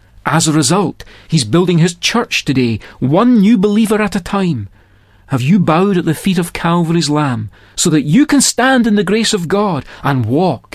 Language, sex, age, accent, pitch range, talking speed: English, male, 40-59, British, 115-185 Hz, 195 wpm